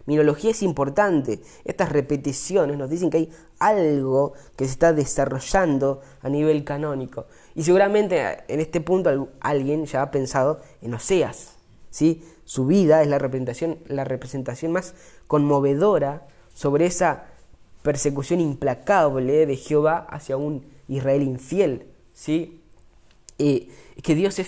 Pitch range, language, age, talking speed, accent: 135-170 Hz, Spanish, 20-39, 125 wpm, Argentinian